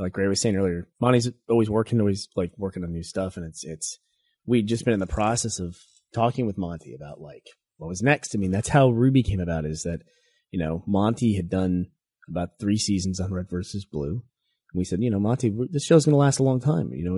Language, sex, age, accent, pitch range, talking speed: English, male, 30-49, American, 95-120 Hz, 240 wpm